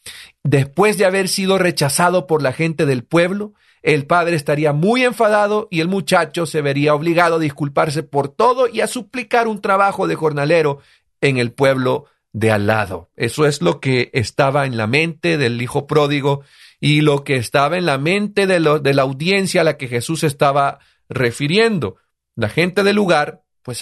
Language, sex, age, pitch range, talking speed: Spanish, male, 40-59, 130-180 Hz, 180 wpm